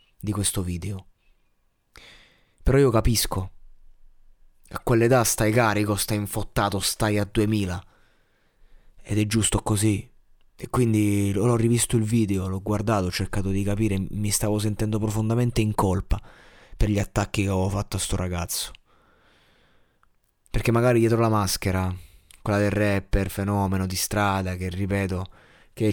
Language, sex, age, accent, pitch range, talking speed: Italian, male, 20-39, native, 95-110 Hz, 140 wpm